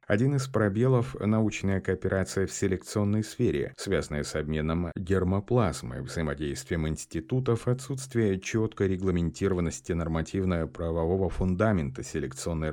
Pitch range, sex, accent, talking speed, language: 80-105 Hz, male, native, 95 wpm, Russian